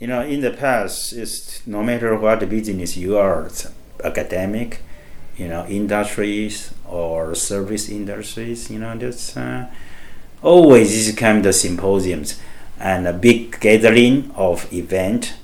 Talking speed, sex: 135 wpm, male